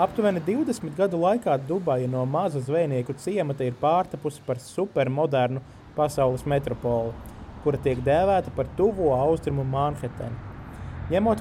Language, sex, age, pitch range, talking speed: English, male, 30-49, 125-170 Hz, 120 wpm